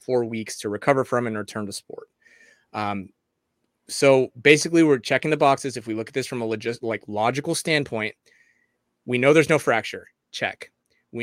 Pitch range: 115-145 Hz